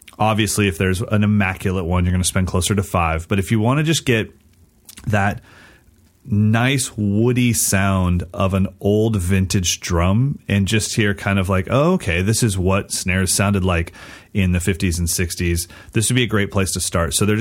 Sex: male